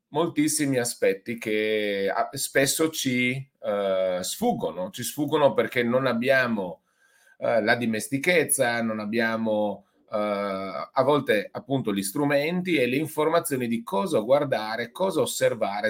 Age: 30-49